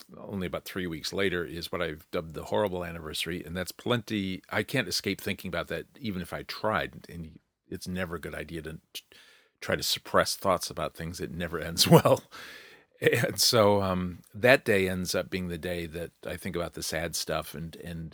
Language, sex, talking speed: English, male, 200 wpm